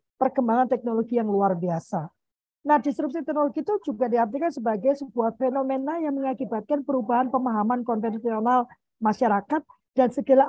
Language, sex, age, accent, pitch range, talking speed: Indonesian, female, 50-69, native, 220-280 Hz, 125 wpm